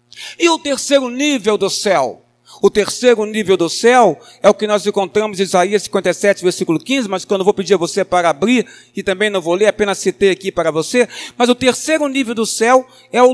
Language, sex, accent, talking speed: Portuguese, male, Brazilian, 215 wpm